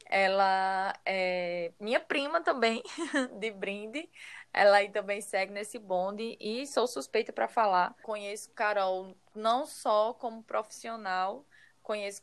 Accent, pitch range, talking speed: Brazilian, 195-235 Hz, 125 wpm